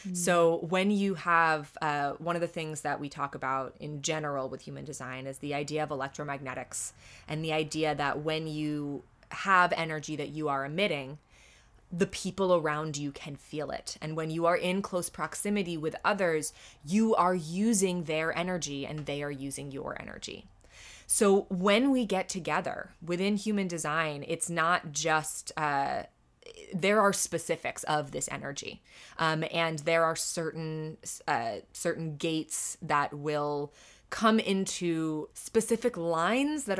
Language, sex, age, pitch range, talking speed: English, female, 20-39, 150-185 Hz, 155 wpm